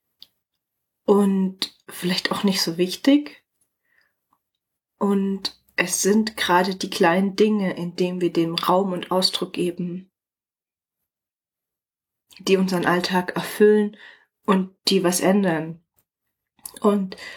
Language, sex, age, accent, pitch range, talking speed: German, female, 30-49, German, 175-210 Hz, 105 wpm